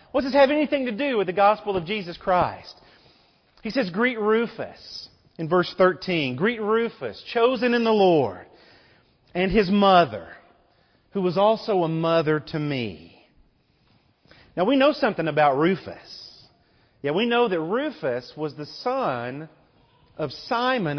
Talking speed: 150 wpm